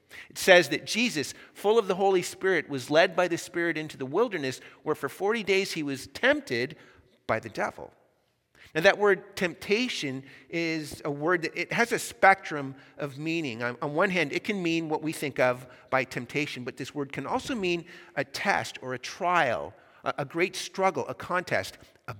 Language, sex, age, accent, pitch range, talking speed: English, male, 50-69, American, 130-180 Hz, 190 wpm